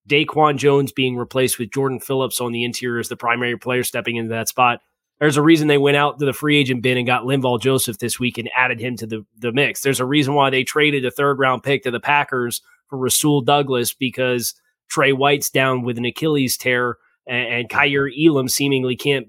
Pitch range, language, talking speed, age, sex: 125-145 Hz, English, 220 wpm, 20-39, male